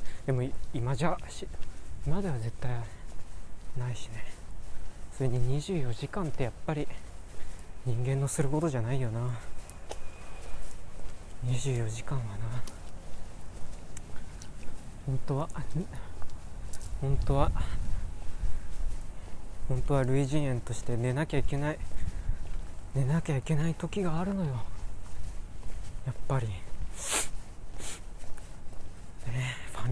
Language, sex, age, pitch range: Japanese, male, 20-39, 90-135 Hz